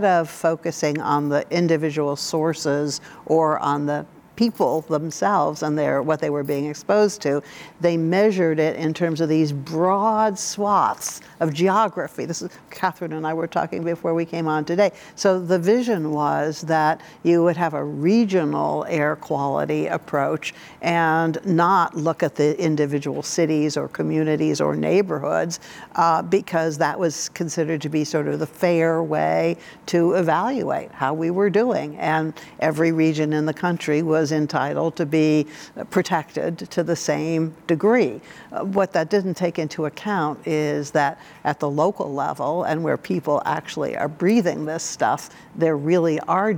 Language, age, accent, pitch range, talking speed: English, 60-79, American, 150-175 Hz, 160 wpm